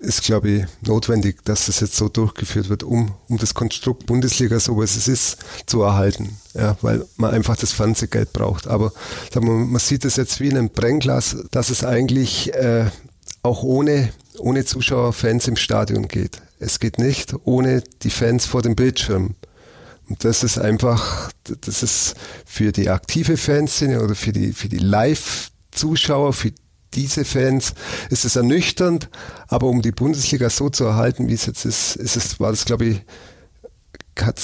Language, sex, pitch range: German, male, 110-135 Hz